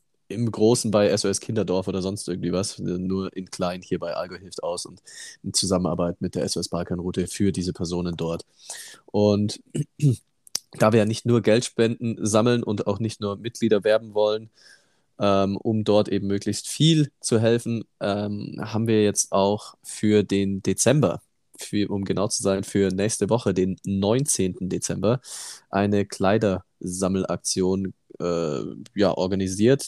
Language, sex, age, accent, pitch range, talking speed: German, male, 20-39, German, 95-115 Hz, 150 wpm